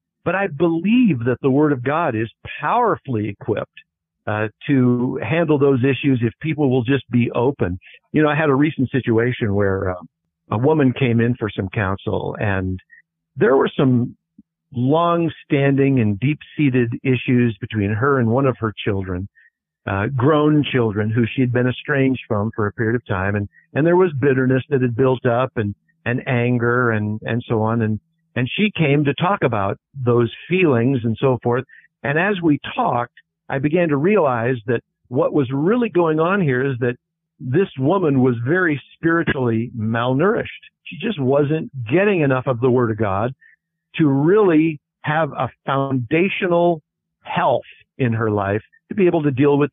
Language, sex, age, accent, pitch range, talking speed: English, male, 50-69, American, 115-155 Hz, 175 wpm